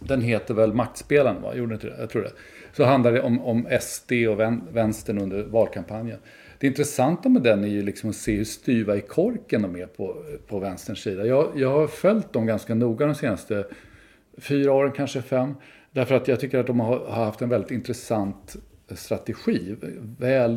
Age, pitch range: 50-69, 110-135 Hz